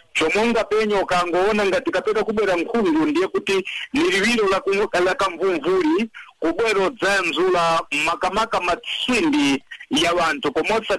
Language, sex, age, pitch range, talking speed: English, male, 60-79, 165-235 Hz, 115 wpm